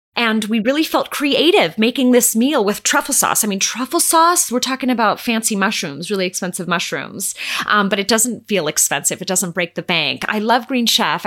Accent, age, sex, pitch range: American, 30-49, female, 205-315 Hz